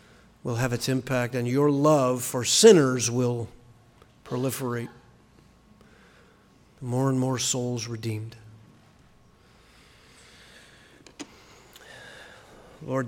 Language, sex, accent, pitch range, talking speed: English, male, American, 115-130 Hz, 80 wpm